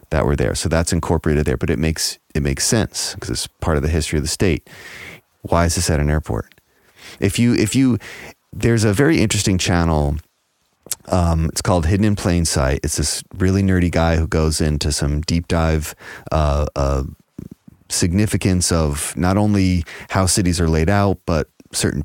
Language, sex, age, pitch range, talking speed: English, male, 30-49, 80-95 Hz, 185 wpm